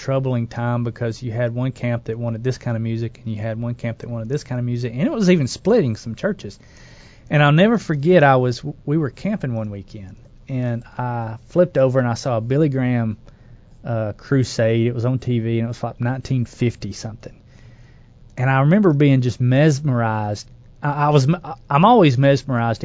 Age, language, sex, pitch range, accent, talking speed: 30-49, English, male, 115-135 Hz, American, 200 wpm